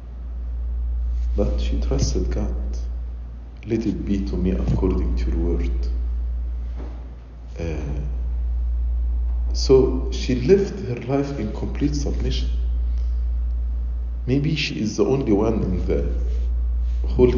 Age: 50-69